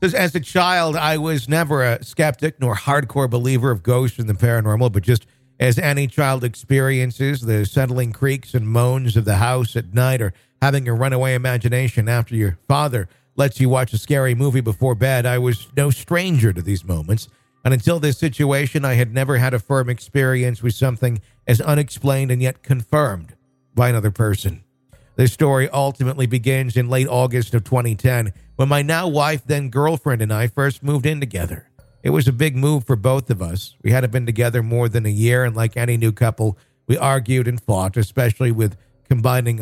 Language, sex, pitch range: English, male, 115-140 Hz